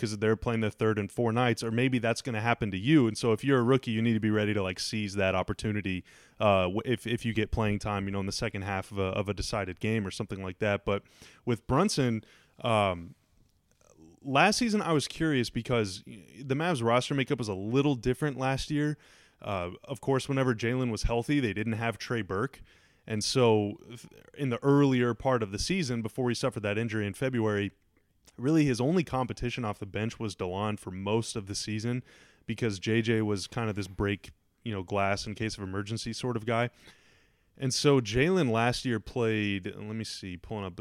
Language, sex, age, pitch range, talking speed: English, male, 20-39, 105-125 Hz, 215 wpm